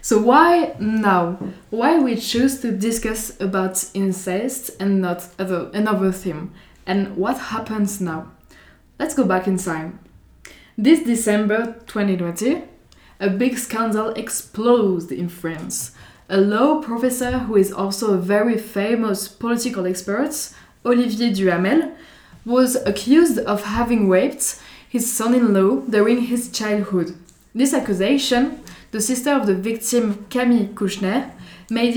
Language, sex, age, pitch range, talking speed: Italian, female, 20-39, 195-245 Hz, 120 wpm